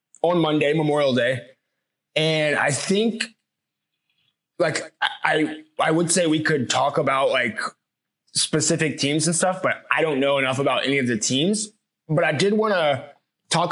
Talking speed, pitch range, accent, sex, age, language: 160 wpm, 140-185 Hz, American, male, 20-39, English